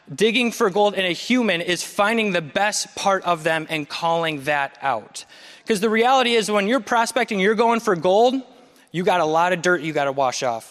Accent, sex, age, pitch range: American, male, 20-39, 170-210 Hz